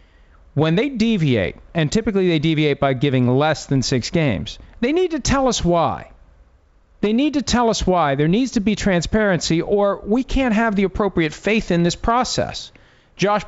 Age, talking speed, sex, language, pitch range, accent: 40-59, 185 wpm, male, English, 130-170 Hz, American